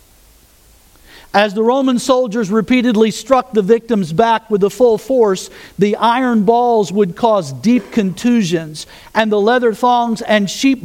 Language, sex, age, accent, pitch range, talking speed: English, male, 50-69, American, 180-235 Hz, 145 wpm